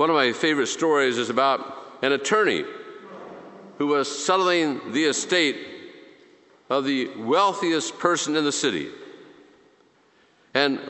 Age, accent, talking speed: 50-69, American, 120 wpm